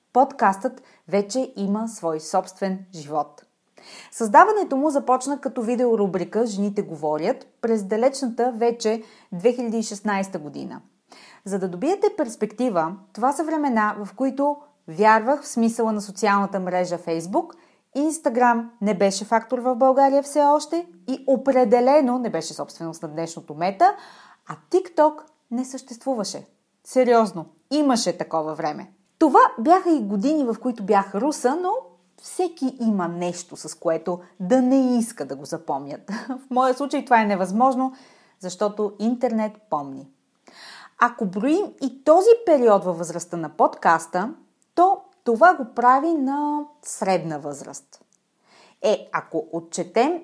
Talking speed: 125 wpm